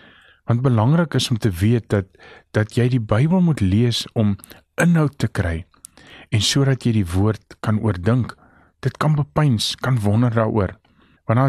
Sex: male